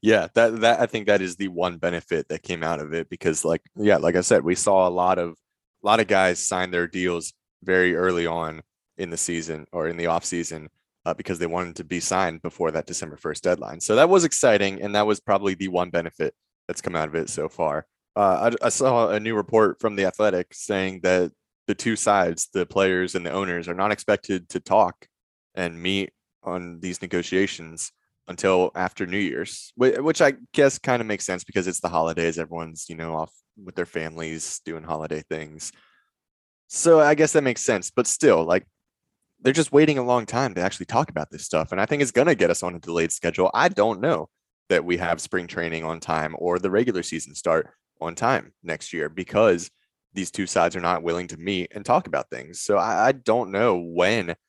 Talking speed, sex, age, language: 220 wpm, male, 20-39, English